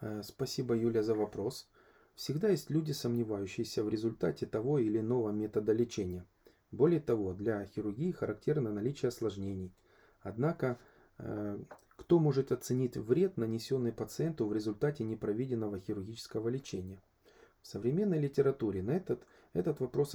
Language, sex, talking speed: Ukrainian, male, 120 wpm